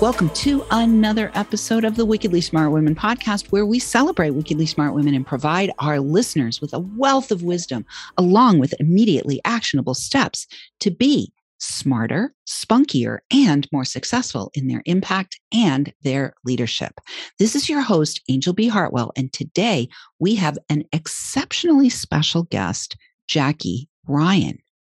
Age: 50-69